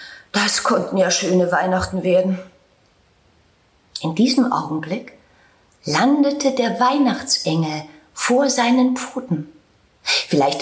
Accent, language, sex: German, German, female